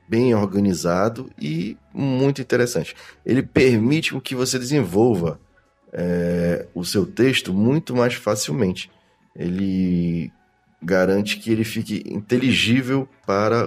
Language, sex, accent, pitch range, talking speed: Portuguese, male, Brazilian, 100-130 Hz, 100 wpm